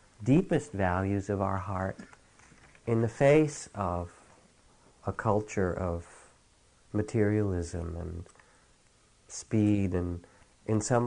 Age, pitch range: 40-59, 90-110 Hz